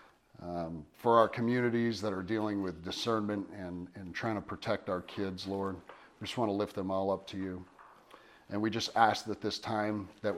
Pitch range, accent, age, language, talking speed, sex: 100-140 Hz, American, 40-59, English, 200 wpm, male